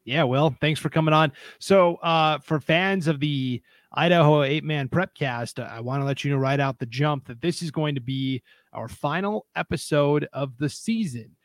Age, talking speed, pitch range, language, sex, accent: 30-49, 205 wpm, 125-155 Hz, English, male, American